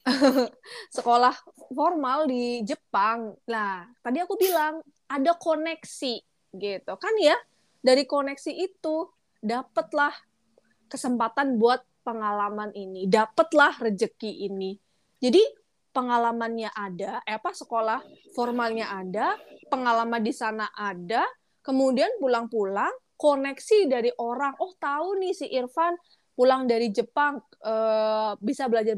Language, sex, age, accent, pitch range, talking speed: Indonesian, female, 20-39, native, 215-285 Hz, 110 wpm